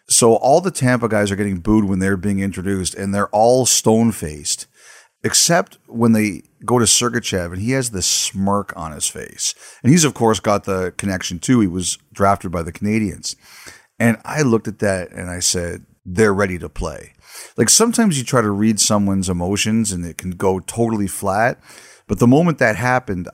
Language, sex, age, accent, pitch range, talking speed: English, male, 40-59, American, 95-115 Hz, 195 wpm